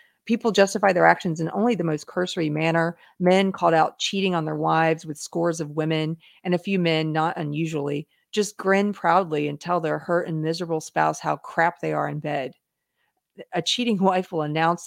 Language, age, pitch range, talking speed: English, 40-59, 150-180 Hz, 195 wpm